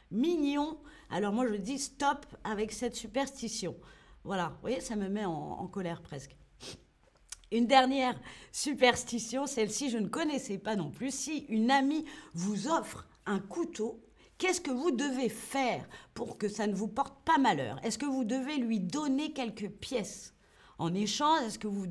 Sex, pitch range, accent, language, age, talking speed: female, 190-270 Hz, French, French, 40-59, 170 wpm